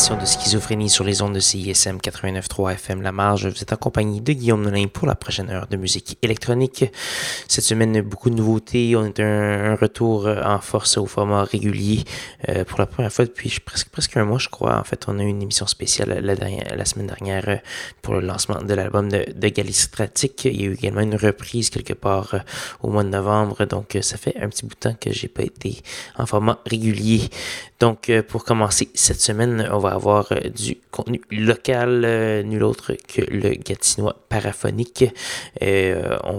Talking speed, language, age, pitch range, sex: 195 wpm, French, 20-39, 100-115 Hz, male